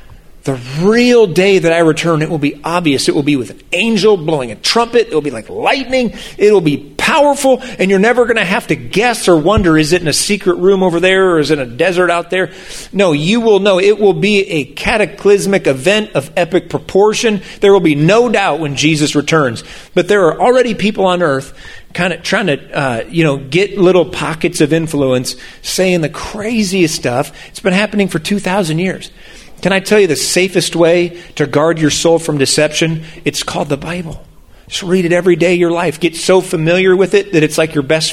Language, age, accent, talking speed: English, 40-59, American, 215 wpm